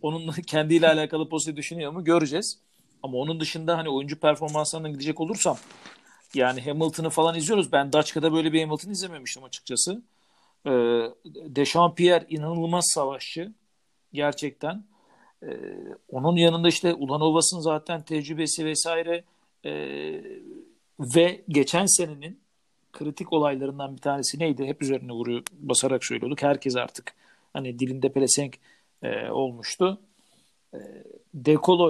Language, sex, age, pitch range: Turkish, male, 50-69, 145-180 Hz